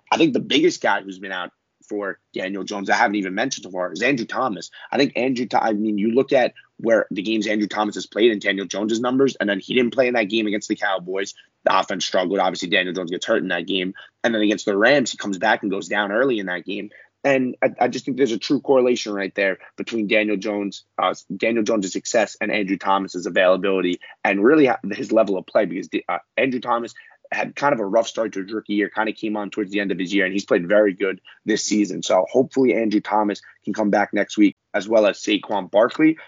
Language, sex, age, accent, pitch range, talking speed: English, male, 30-49, American, 100-115 Hz, 250 wpm